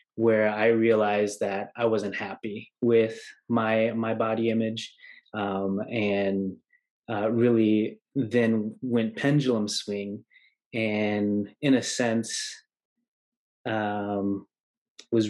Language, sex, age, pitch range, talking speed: English, male, 20-39, 105-120 Hz, 100 wpm